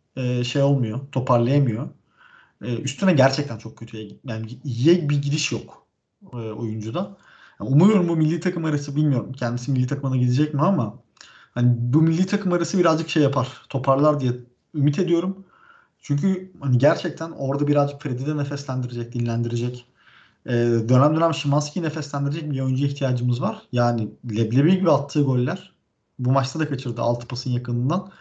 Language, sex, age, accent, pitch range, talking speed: Turkish, male, 40-59, native, 125-165 Hz, 140 wpm